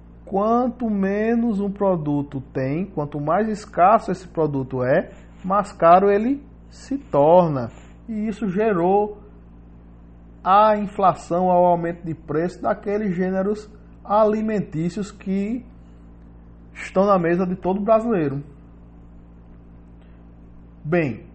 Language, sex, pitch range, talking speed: English, male, 130-195 Hz, 100 wpm